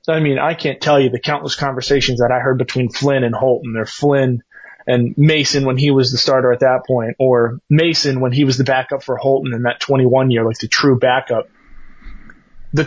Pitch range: 130-150 Hz